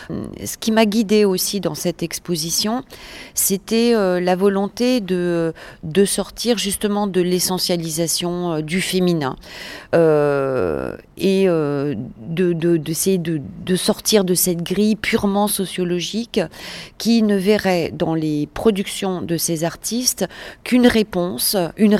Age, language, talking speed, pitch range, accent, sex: 40-59, French, 110 wpm, 160-200 Hz, French, female